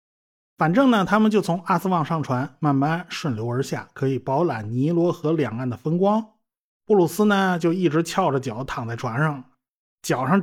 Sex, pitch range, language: male, 125-185 Hz, Chinese